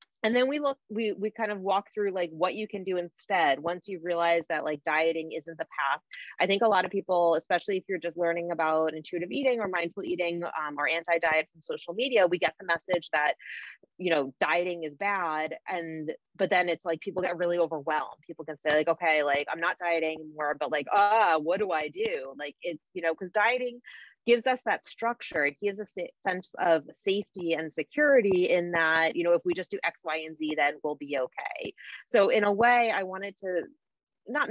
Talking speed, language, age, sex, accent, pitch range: 225 wpm, English, 30-49, female, American, 160-200 Hz